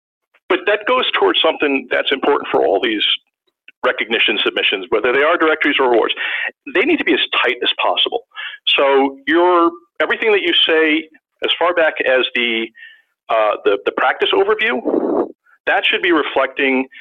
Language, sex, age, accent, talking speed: English, male, 50-69, American, 160 wpm